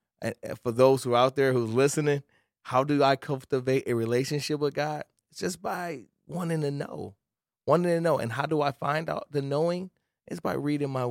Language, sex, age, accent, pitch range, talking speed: English, male, 20-39, American, 115-135 Hz, 205 wpm